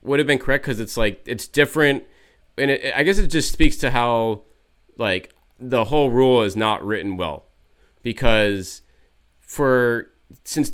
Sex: male